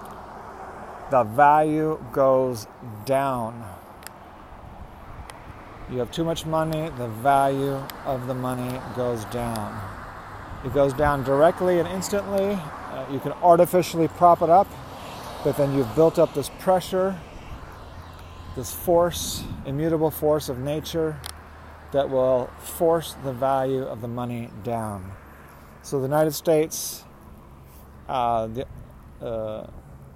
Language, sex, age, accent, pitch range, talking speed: English, male, 40-59, American, 100-145 Hz, 115 wpm